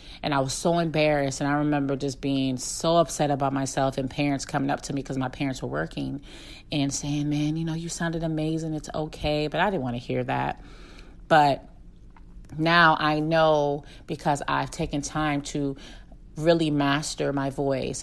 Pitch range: 135-150 Hz